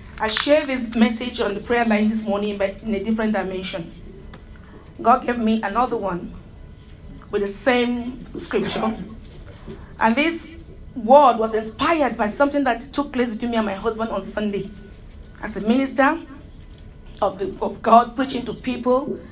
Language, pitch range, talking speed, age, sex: English, 205-240 Hz, 155 wpm, 40-59, female